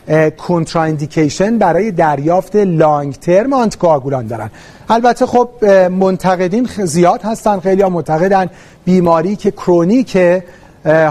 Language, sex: Persian, male